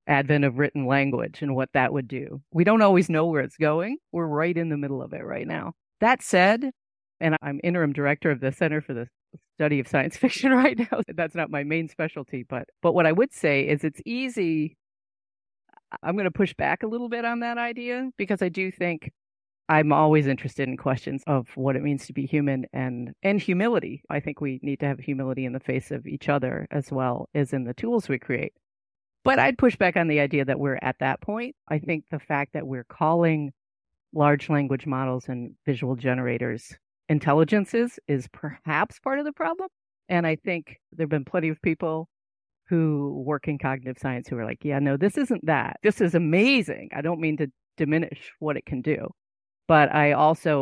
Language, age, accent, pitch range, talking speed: English, 40-59, American, 135-180 Hz, 210 wpm